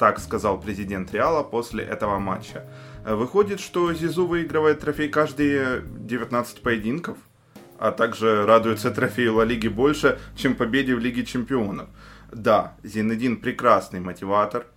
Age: 20-39